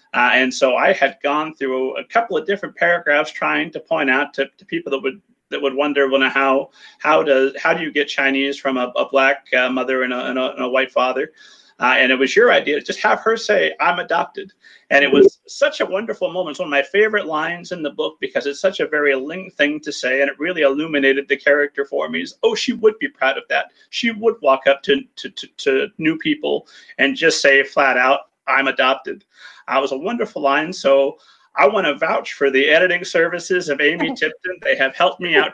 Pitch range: 135-200 Hz